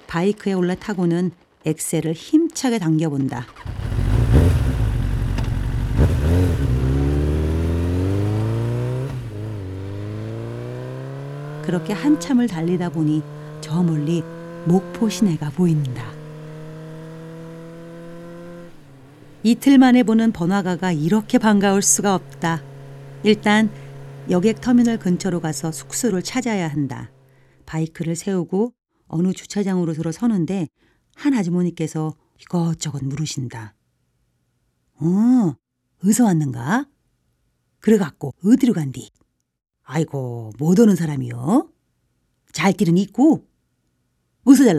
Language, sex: Korean, female